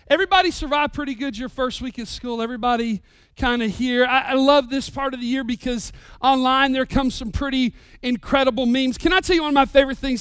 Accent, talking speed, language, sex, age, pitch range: American, 215 wpm, English, male, 40-59, 240-290 Hz